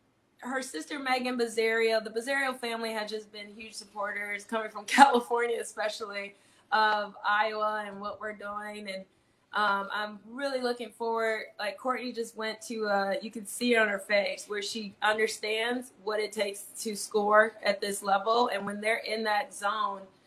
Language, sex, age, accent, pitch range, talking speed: English, female, 20-39, American, 210-240 Hz, 170 wpm